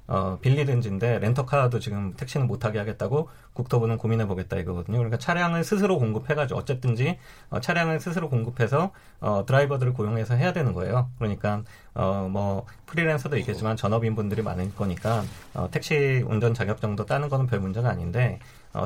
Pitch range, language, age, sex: 105-145 Hz, Korean, 40-59, male